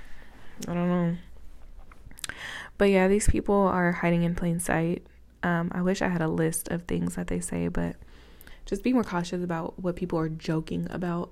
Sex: female